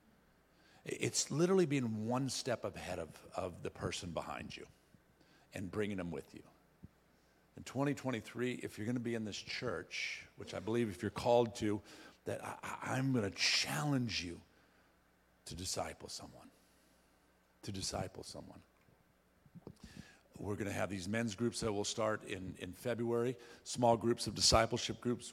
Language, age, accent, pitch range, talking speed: English, 50-69, American, 105-135 Hz, 155 wpm